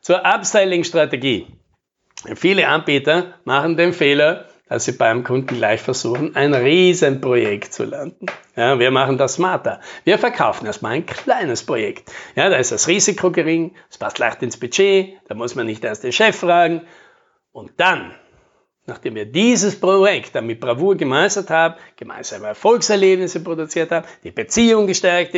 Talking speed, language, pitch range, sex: 155 wpm, German, 140-195 Hz, male